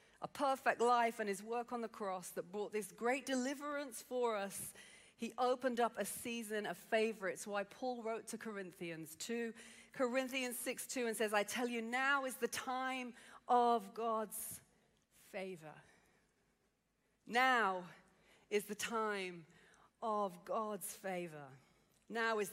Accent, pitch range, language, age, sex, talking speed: British, 195-235 Hz, English, 40-59, female, 145 wpm